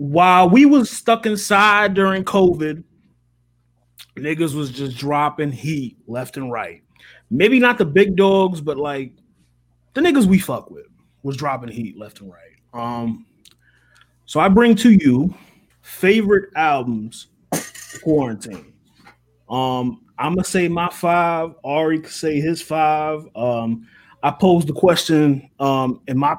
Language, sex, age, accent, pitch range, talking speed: English, male, 30-49, American, 115-170 Hz, 135 wpm